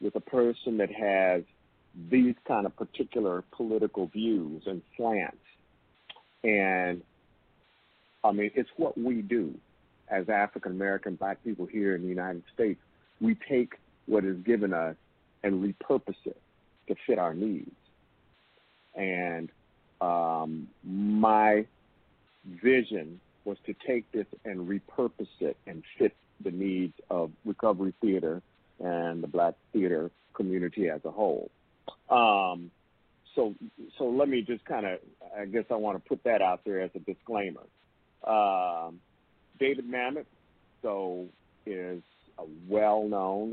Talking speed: 130 wpm